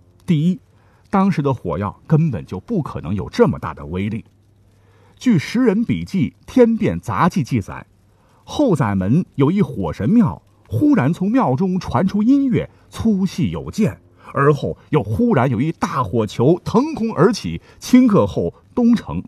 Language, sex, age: Chinese, male, 50-69